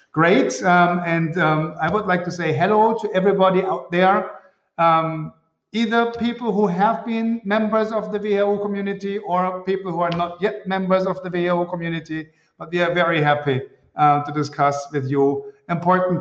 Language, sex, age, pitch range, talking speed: English, male, 50-69, 160-200 Hz, 175 wpm